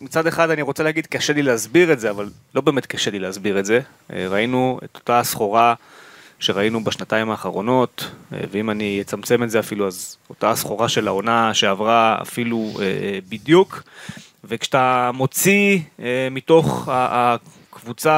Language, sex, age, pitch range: Hebrew, male, 20-39, 115-160 Hz